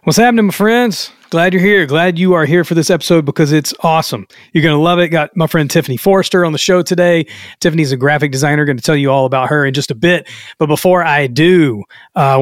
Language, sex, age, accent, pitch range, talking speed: English, male, 30-49, American, 135-170 Hz, 245 wpm